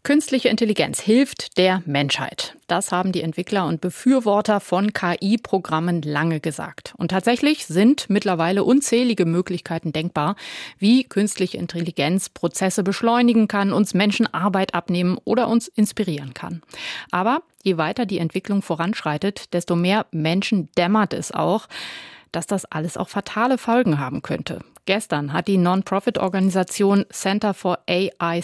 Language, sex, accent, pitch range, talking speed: German, female, German, 170-210 Hz, 135 wpm